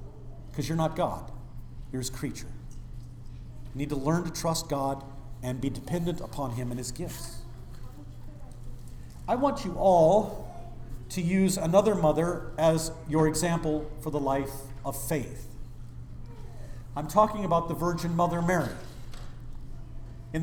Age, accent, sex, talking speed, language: 50-69, American, male, 135 wpm, English